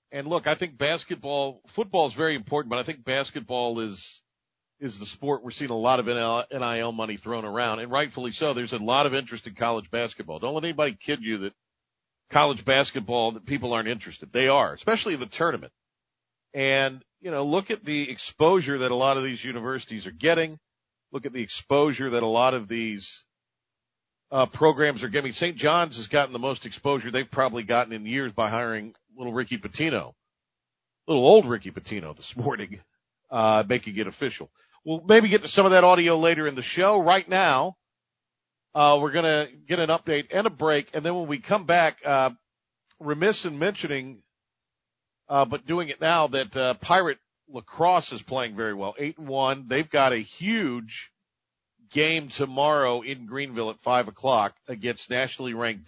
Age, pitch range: 50-69, 120-150 Hz